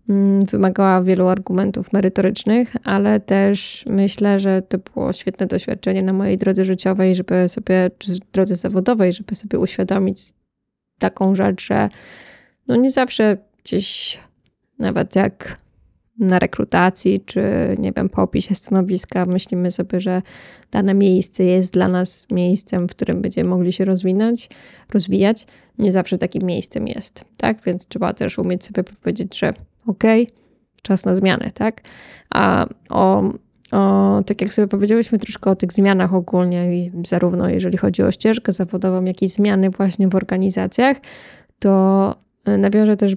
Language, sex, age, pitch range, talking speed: Polish, female, 20-39, 185-205 Hz, 140 wpm